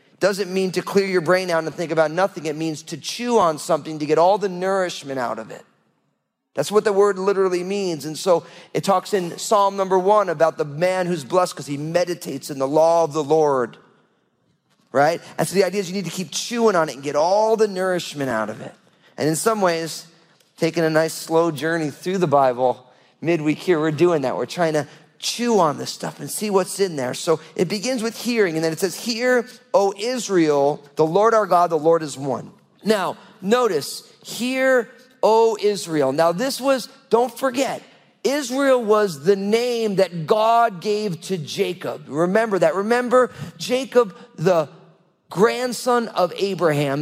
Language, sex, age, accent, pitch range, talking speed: English, male, 40-59, American, 160-215 Hz, 195 wpm